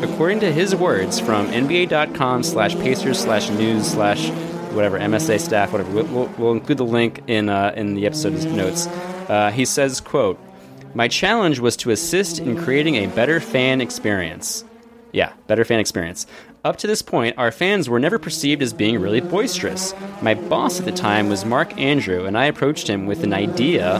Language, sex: English, male